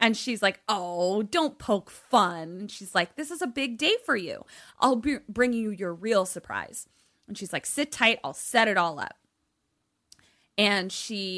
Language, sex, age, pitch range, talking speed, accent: English, female, 20-39, 170-215 Hz, 180 wpm, American